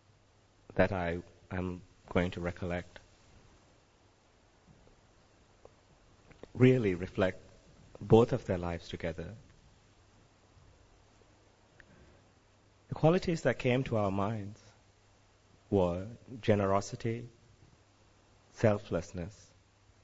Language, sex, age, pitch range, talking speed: English, male, 30-49, 95-110 Hz, 70 wpm